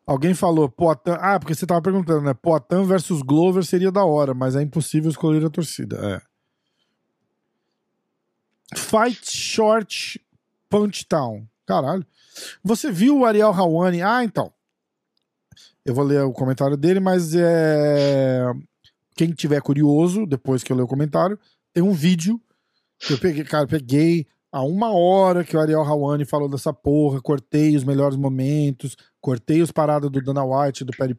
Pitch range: 140-185 Hz